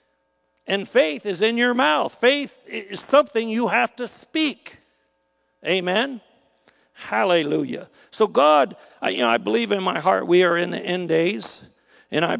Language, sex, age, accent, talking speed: English, male, 50-69, American, 160 wpm